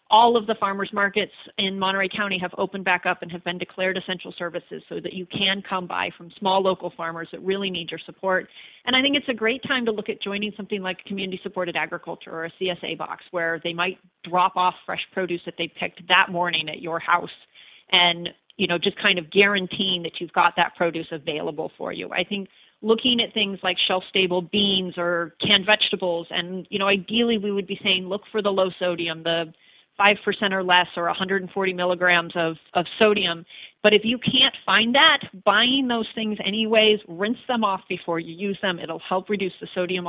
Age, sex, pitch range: 40-59, female, 175-205 Hz